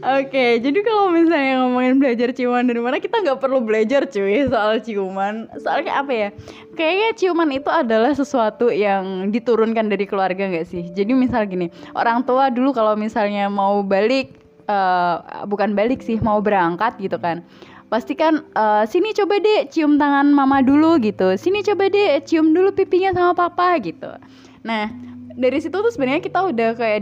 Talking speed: 170 wpm